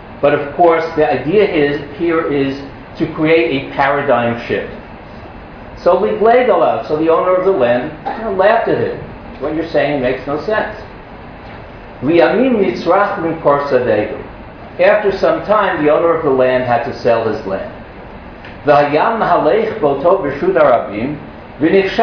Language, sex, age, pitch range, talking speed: English, male, 50-69, 125-170 Hz, 115 wpm